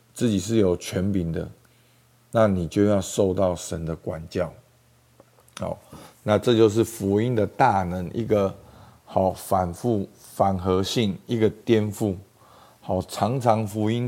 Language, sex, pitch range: Chinese, male, 90-115 Hz